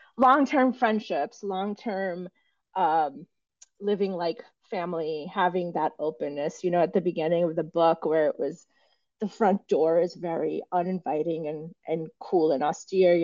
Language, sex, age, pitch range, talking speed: English, female, 30-49, 160-200 Hz, 155 wpm